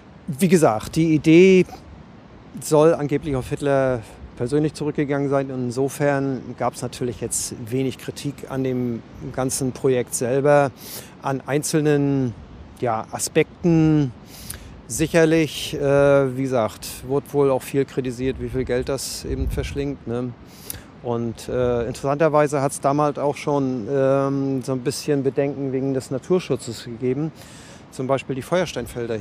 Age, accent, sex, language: 40-59, German, male, German